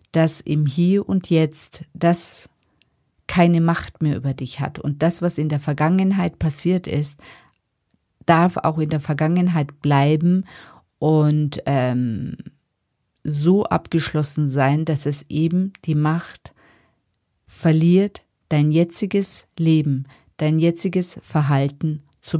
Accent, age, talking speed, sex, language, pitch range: German, 50-69, 120 wpm, female, German, 145-170 Hz